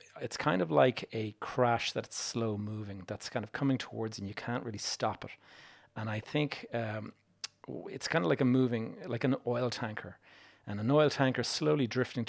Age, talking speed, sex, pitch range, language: 40-59, 195 wpm, male, 110-125 Hz, English